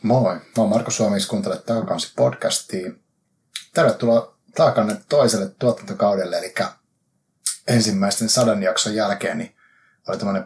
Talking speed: 120 wpm